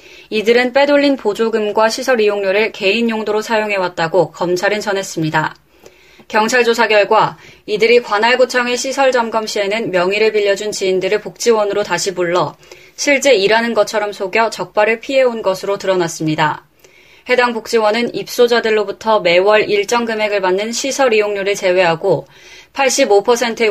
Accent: native